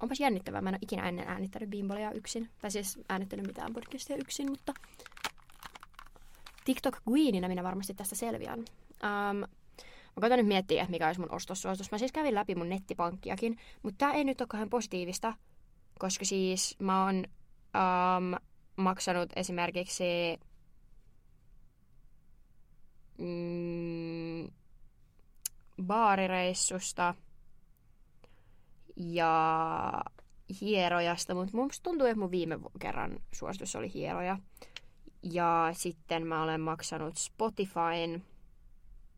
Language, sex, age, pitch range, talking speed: Finnish, female, 20-39, 175-225 Hz, 105 wpm